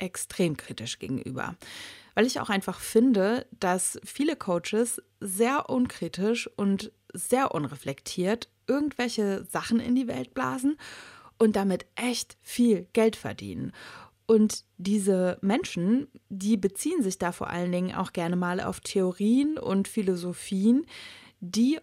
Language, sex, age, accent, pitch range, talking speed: German, female, 20-39, German, 175-230 Hz, 125 wpm